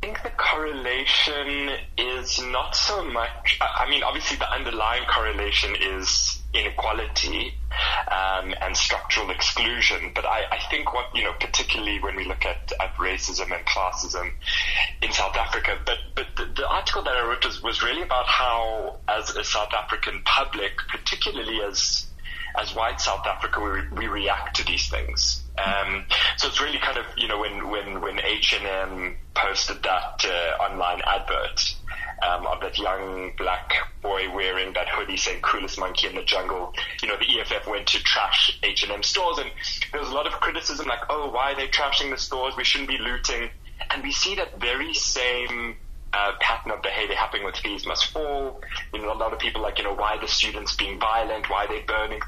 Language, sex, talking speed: English, male, 185 wpm